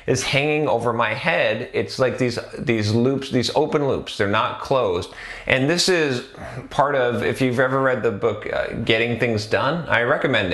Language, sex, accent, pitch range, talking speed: English, male, American, 105-135 Hz, 190 wpm